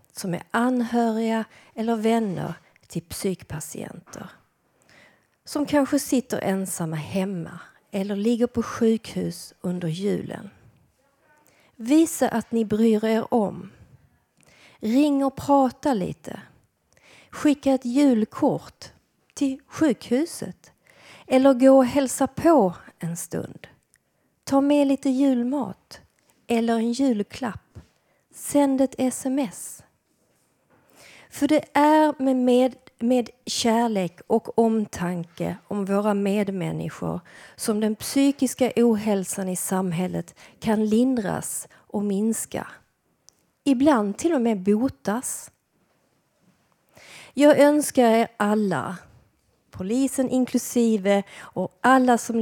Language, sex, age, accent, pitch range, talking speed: Swedish, female, 40-59, native, 200-265 Hz, 95 wpm